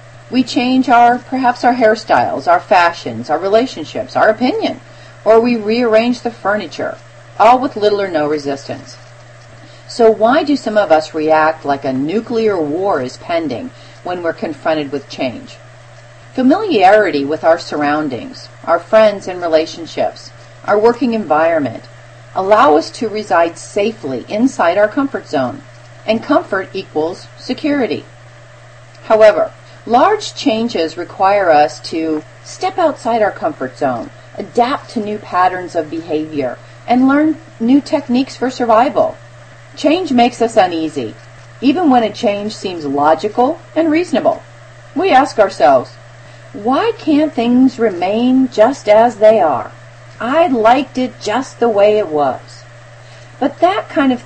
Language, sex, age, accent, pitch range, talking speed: English, female, 40-59, American, 145-245 Hz, 135 wpm